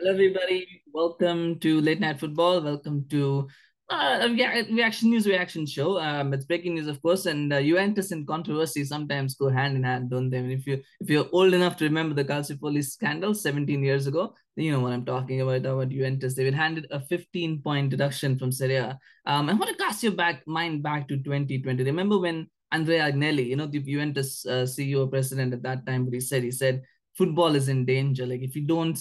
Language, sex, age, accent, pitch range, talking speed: English, male, 20-39, Indian, 130-160 Hz, 220 wpm